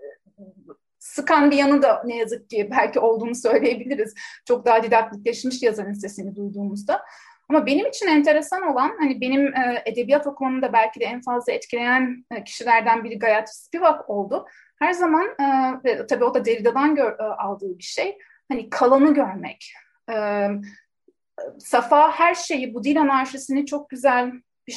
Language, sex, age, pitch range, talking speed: Turkish, female, 30-49, 225-270 Hz, 135 wpm